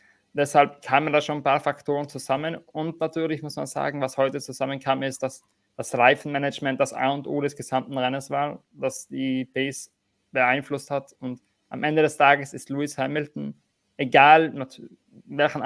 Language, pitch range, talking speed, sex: German, 130-145 Hz, 165 wpm, male